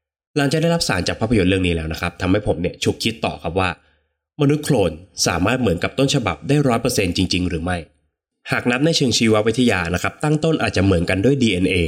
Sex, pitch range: male, 85-125 Hz